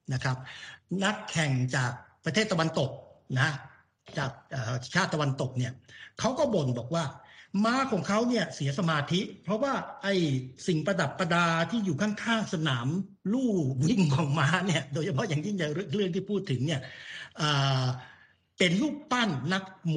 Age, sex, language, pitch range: 60-79, male, Thai, 135-185 Hz